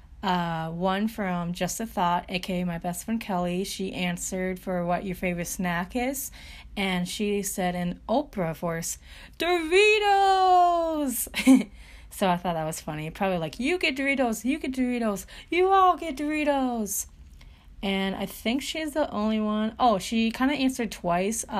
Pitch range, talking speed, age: 175-235 Hz, 160 wpm, 30-49